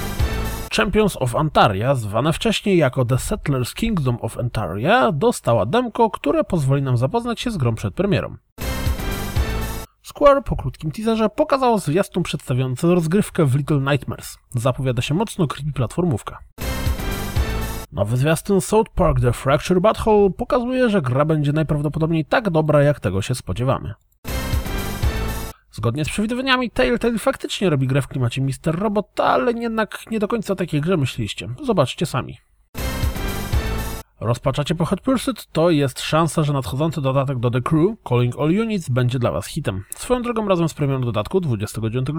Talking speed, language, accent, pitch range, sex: 150 wpm, Polish, native, 125-205 Hz, male